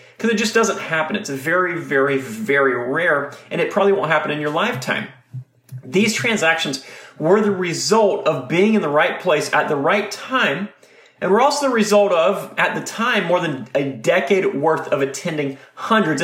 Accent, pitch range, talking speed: American, 145-205 Hz, 185 wpm